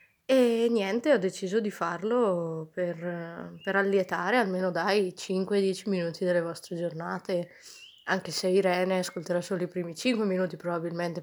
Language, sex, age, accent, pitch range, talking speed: Italian, female, 20-39, native, 175-210 Hz, 140 wpm